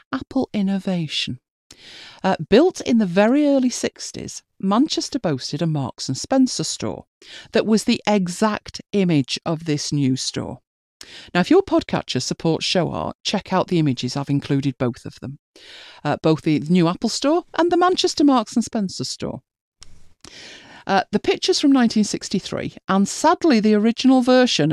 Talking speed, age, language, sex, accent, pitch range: 155 wpm, 50-69, English, female, British, 155-235 Hz